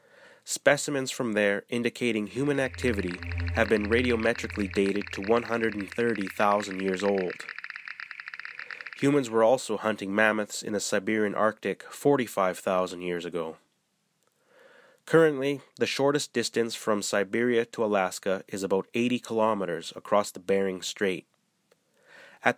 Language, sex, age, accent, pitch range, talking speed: English, male, 20-39, American, 105-130 Hz, 115 wpm